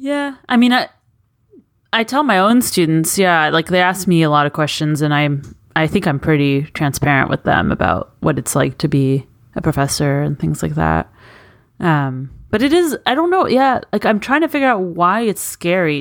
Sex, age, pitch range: female, 30-49, 145-190 Hz